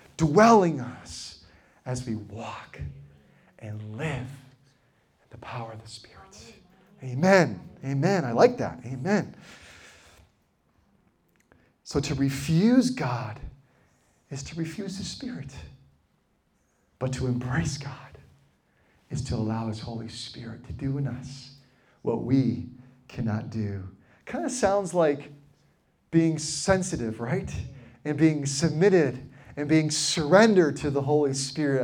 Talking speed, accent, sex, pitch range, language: 120 wpm, American, male, 115-155 Hz, English